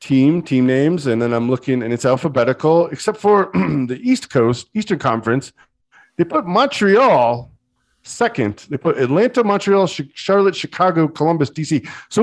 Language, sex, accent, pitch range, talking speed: English, male, American, 125-190 Hz, 150 wpm